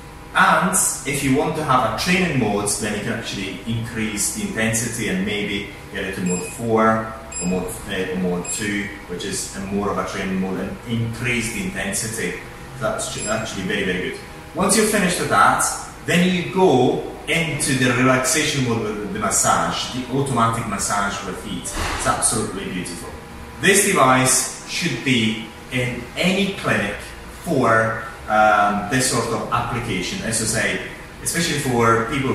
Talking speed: 165 wpm